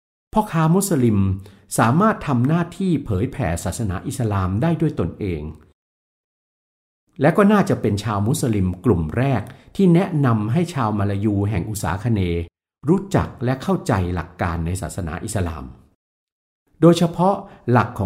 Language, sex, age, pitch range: Thai, male, 60-79, 95-135 Hz